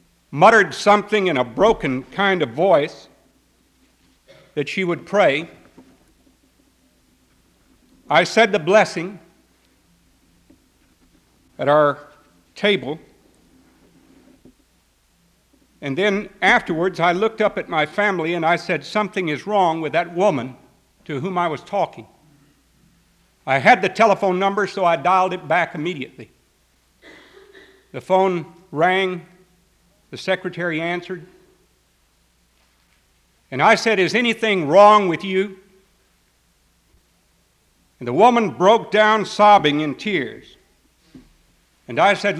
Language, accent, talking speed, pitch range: English, American, 110 wpm, 155-205 Hz